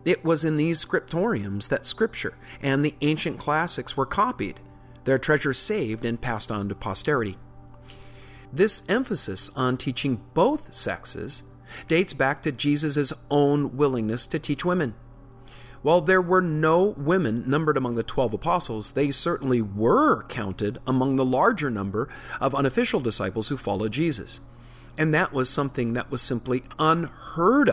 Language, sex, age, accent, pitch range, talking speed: English, male, 40-59, American, 115-150 Hz, 145 wpm